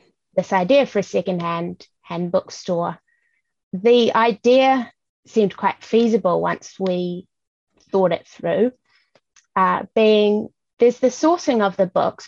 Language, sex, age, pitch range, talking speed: English, female, 20-39, 185-220 Hz, 115 wpm